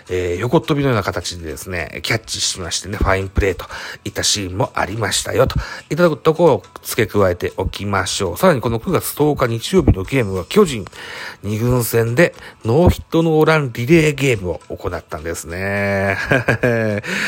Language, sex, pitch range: Japanese, male, 95-150 Hz